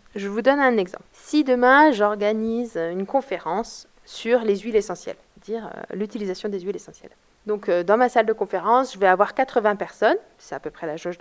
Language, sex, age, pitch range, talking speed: French, female, 20-39, 185-245 Hz, 195 wpm